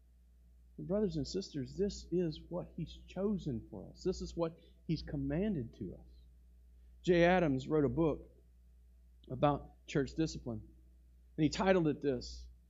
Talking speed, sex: 140 wpm, male